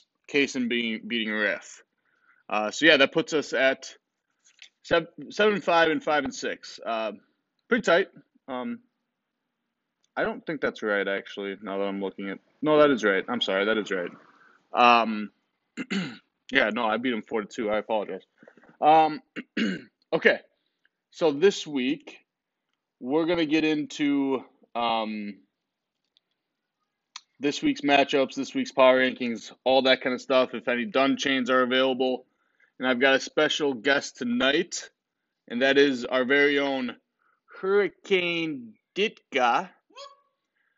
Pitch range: 120-165 Hz